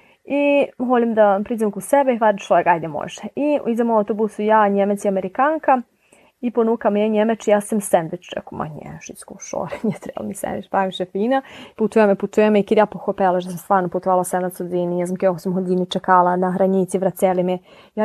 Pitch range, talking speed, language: 190-240 Hz, 195 wpm, Ukrainian